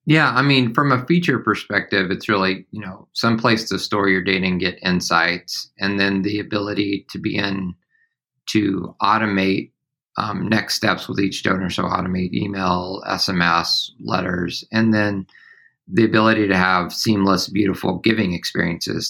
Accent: American